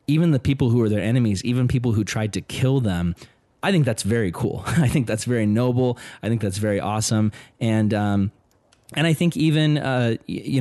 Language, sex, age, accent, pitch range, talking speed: English, male, 30-49, American, 110-135 Hz, 210 wpm